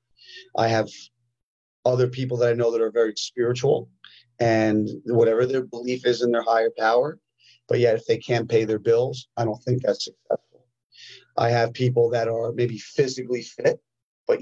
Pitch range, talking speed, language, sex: 115-125 Hz, 175 wpm, English, male